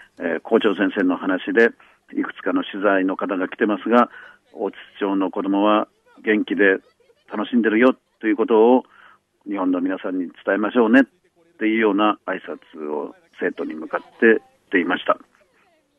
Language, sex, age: Japanese, male, 40-59